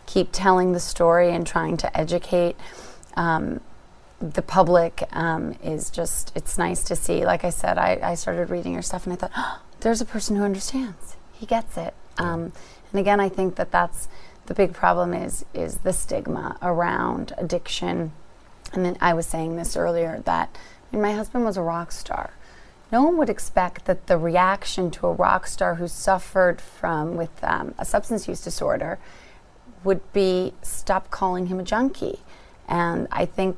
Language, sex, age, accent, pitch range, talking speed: English, female, 30-49, American, 170-195 Hz, 180 wpm